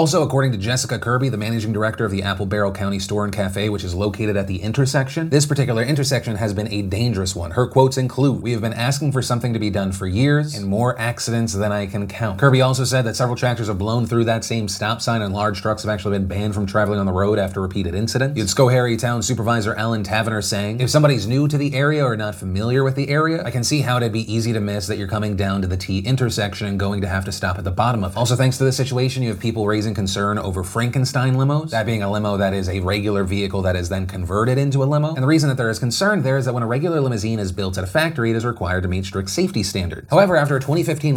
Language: English